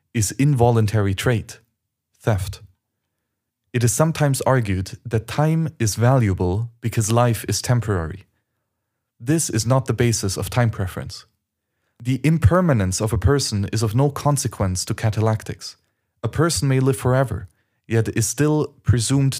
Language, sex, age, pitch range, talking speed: English, male, 30-49, 105-130 Hz, 135 wpm